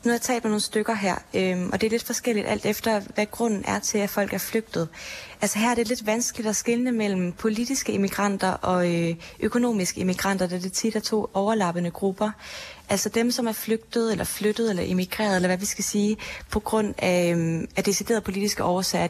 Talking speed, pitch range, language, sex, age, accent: 215 wpm, 180-215 Hz, Danish, female, 20-39, native